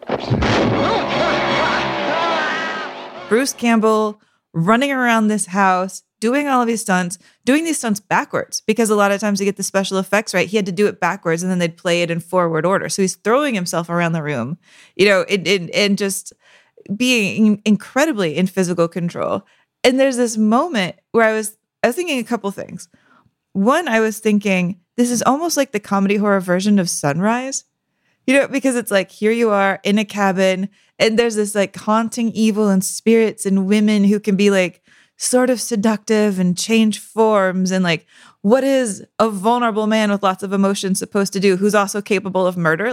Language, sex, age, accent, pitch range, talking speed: English, female, 20-39, American, 185-225 Hz, 190 wpm